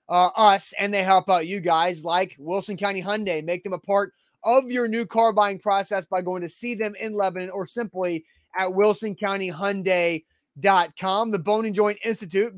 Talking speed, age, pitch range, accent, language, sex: 190 wpm, 30-49, 180-215 Hz, American, English, male